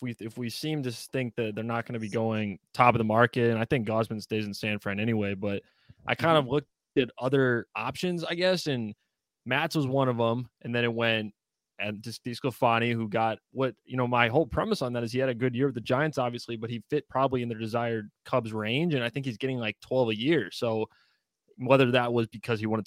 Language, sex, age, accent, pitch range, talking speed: English, male, 20-39, American, 110-130 Hz, 245 wpm